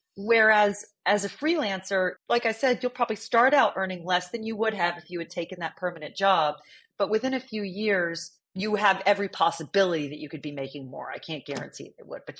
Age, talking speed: 40-59, 220 wpm